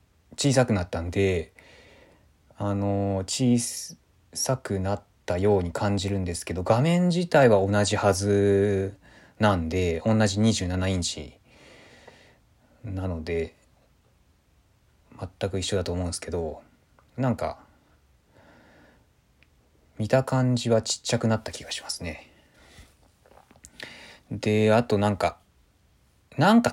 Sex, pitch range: male, 85-115 Hz